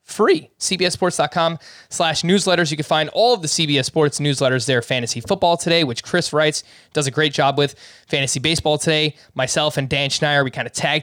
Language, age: English, 20-39